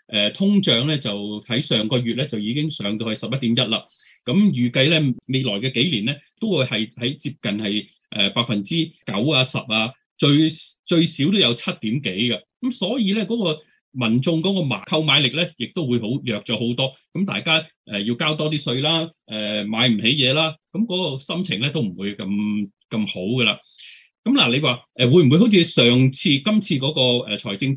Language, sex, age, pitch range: Chinese, male, 20-39, 115-165 Hz